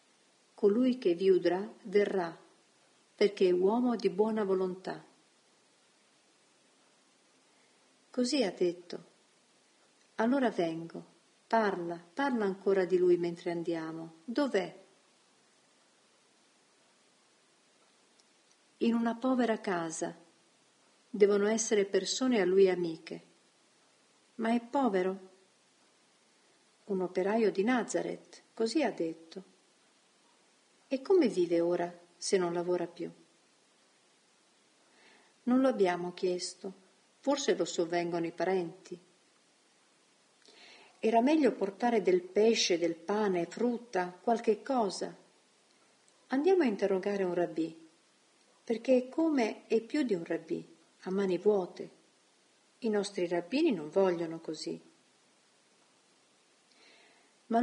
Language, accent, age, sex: Italian, native, 50-69, female